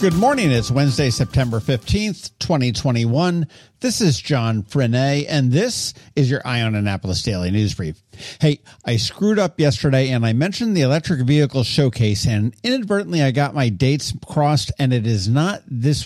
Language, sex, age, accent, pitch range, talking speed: English, male, 50-69, American, 115-160 Hz, 165 wpm